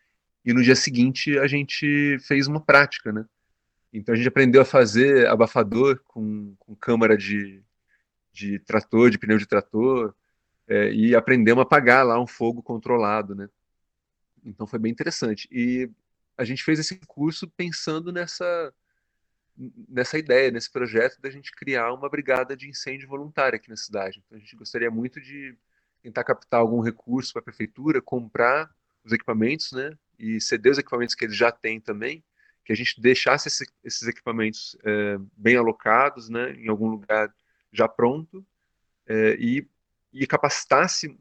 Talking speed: 160 wpm